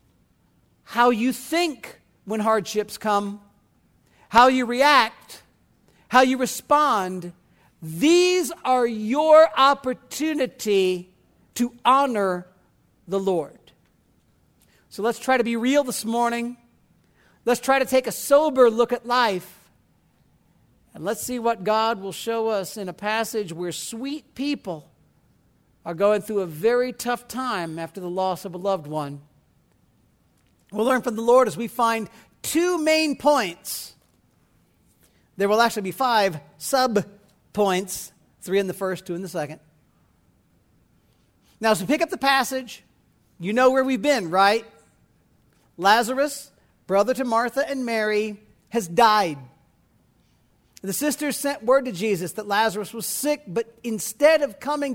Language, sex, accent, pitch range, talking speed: English, male, American, 195-260 Hz, 135 wpm